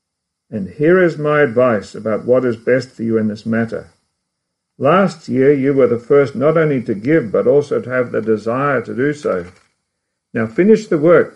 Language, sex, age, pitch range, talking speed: English, male, 60-79, 120-160 Hz, 195 wpm